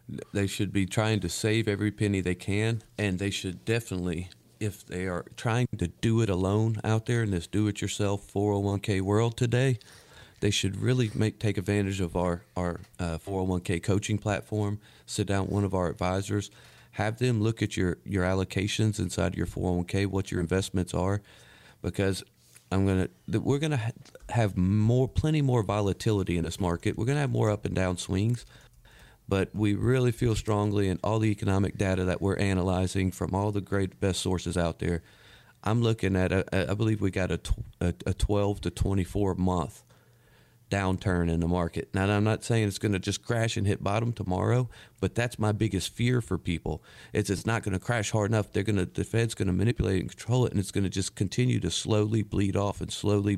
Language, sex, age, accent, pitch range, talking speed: English, male, 40-59, American, 95-110 Hz, 195 wpm